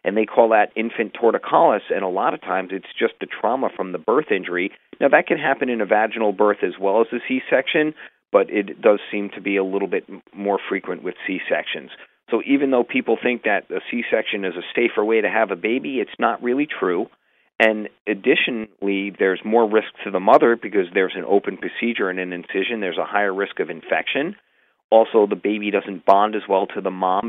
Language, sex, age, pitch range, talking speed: English, male, 40-59, 100-125 Hz, 215 wpm